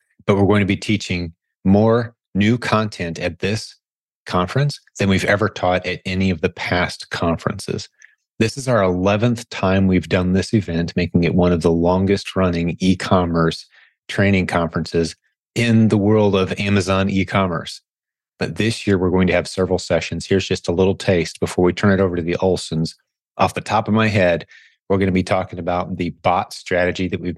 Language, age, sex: English, 30-49, male